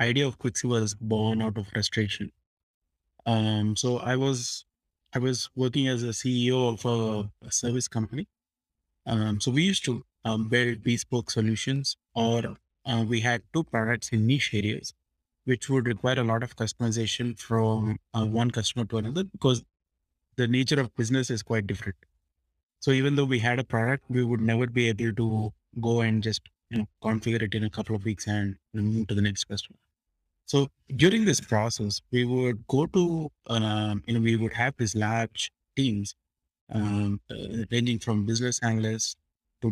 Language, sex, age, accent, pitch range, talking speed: English, male, 20-39, Indian, 105-125 Hz, 175 wpm